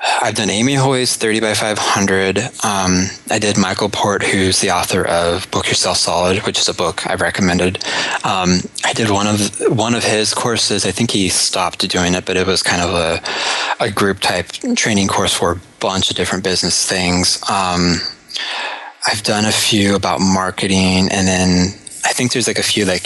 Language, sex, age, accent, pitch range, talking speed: English, male, 20-39, American, 95-110 Hz, 195 wpm